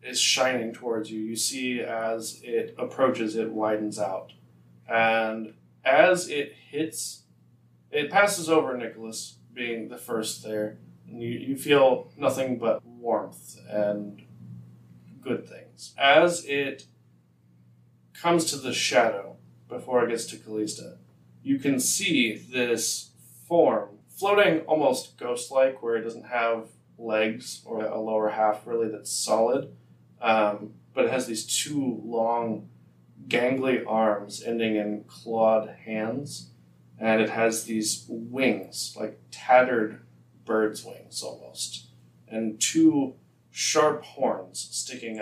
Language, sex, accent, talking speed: English, male, American, 125 wpm